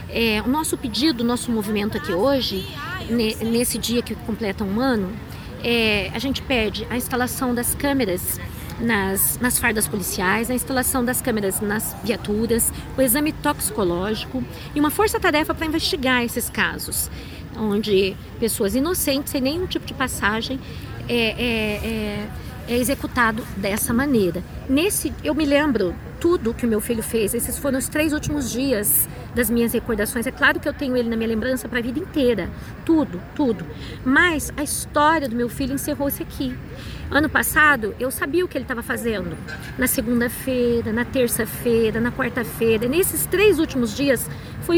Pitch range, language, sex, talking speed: 220-275 Hz, Portuguese, female, 160 wpm